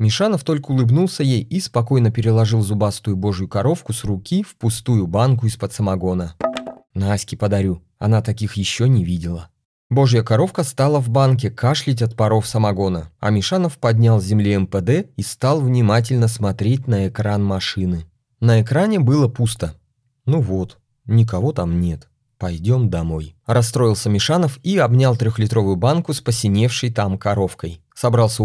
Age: 30-49